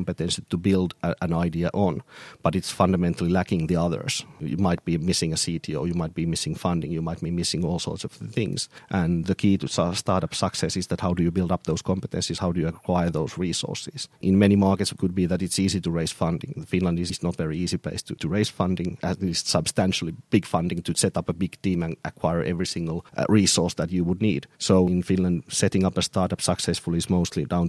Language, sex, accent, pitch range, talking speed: English, male, Finnish, 85-95 Hz, 230 wpm